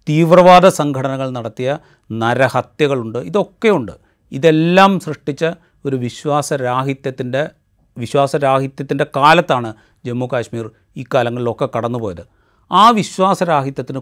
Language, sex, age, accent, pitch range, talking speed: Malayalam, male, 30-49, native, 115-150 Hz, 75 wpm